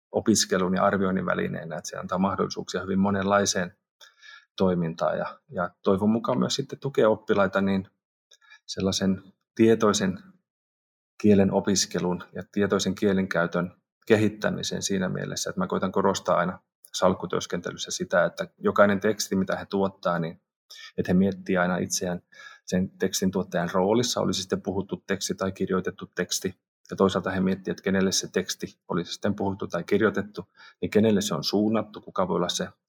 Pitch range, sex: 95-105 Hz, male